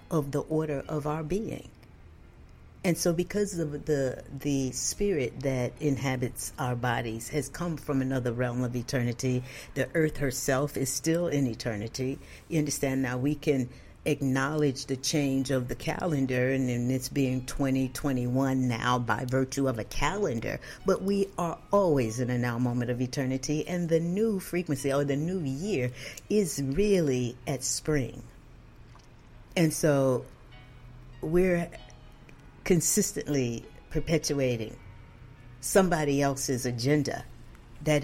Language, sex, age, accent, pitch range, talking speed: English, female, 50-69, American, 125-150 Hz, 135 wpm